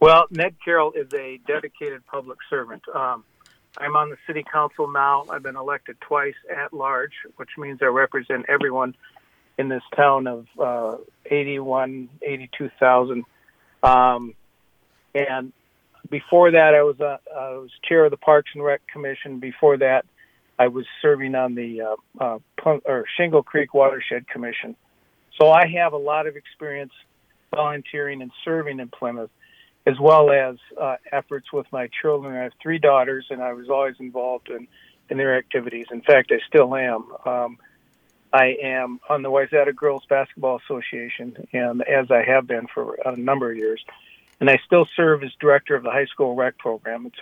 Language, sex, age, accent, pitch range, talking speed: English, male, 50-69, American, 125-150 Hz, 170 wpm